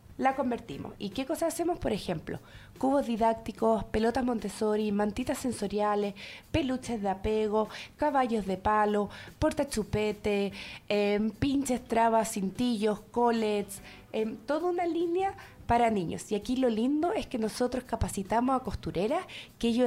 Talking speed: 135 wpm